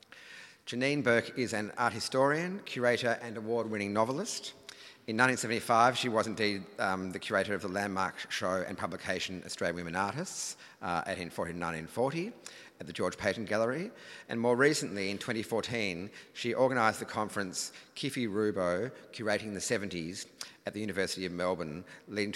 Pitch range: 95-115 Hz